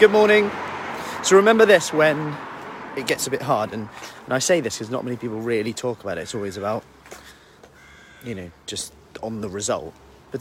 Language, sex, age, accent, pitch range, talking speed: English, male, 30-49, British, 120-155 Hz, 190 wpm